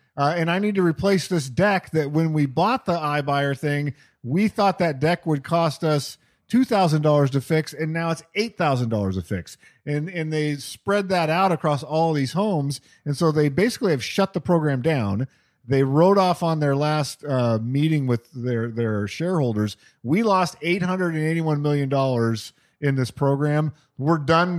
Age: 40-59